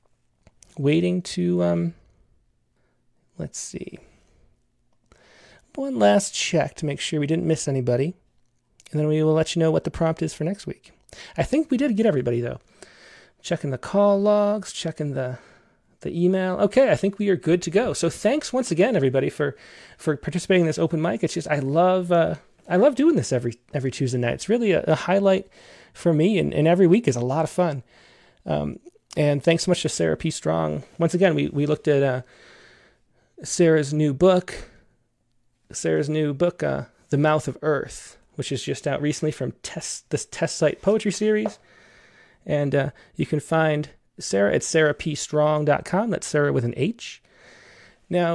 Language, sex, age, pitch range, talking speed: English, male, 30-49, 130-180 Hz, 180 wpm